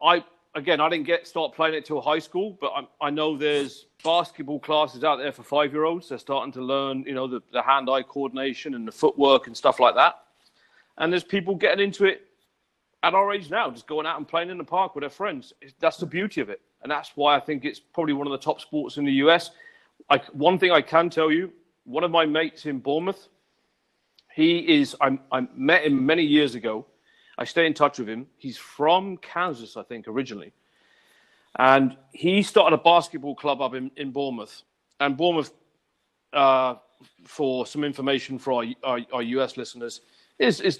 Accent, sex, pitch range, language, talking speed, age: British, male, 135-170 Hz, English, 205 wpm, 40-59